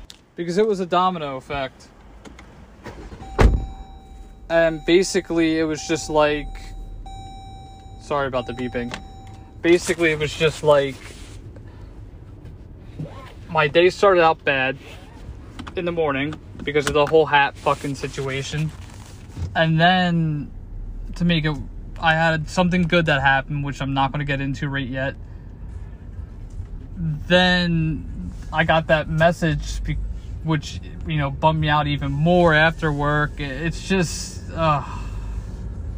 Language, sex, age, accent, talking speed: English, male, 20-39, American, 125 wpm